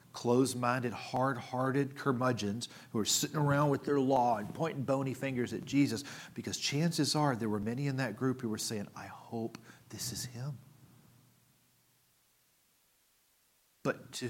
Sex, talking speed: male, 145 wpm